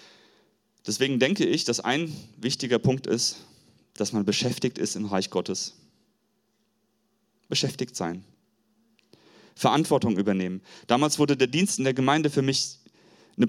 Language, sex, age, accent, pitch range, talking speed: German, male, 30-49, German, 110-145 Hz, 130 wpm